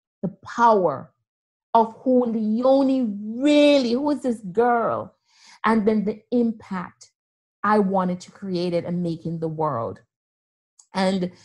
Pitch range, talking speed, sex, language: 205-265 Hz, 130 wpm, female, English